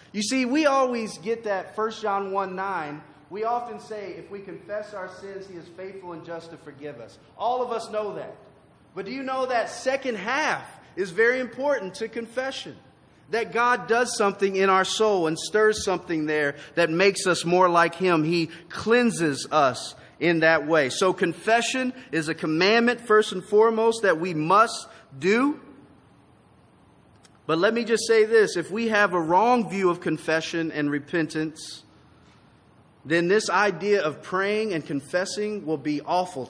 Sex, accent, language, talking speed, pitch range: male, American, English, 170 wpm, 165-215 Hz